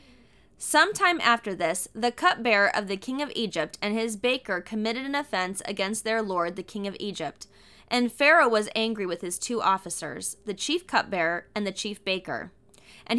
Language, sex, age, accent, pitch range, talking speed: English, female, 20-39, American, 195-260 Hz, 180 wpm